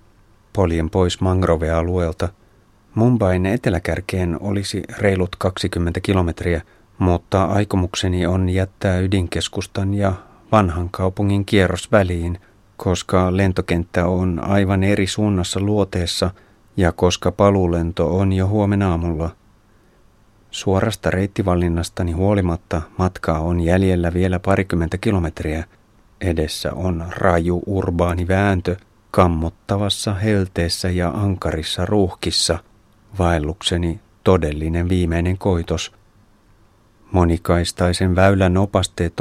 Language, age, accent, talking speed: Finnish, 30-49, native, 90 wpm